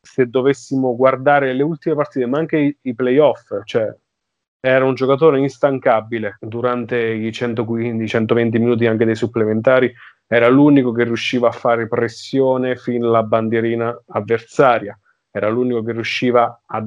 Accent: native